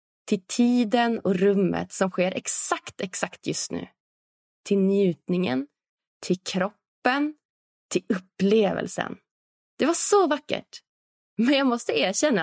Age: 20-39